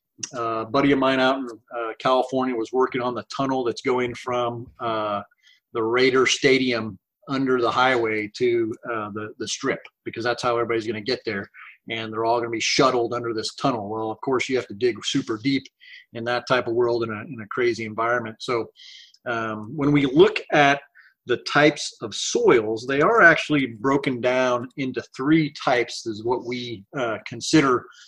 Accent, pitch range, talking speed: American, 120-145 Hz, 190 wpm